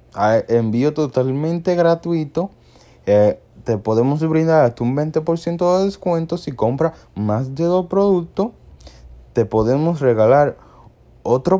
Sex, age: male, 20-39